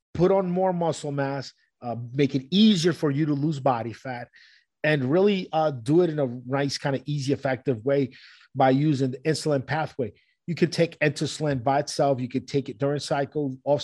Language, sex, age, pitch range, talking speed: English, male, 30-49, 130-155 Hz, 200 wpm